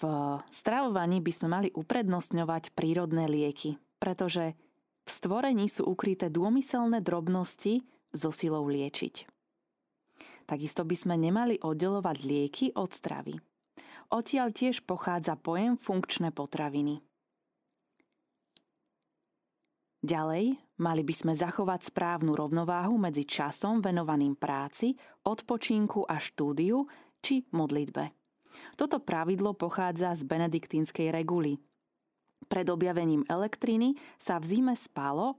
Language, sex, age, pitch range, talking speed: Slovak, female, 20-39, 160-215 Hz, 105 wpm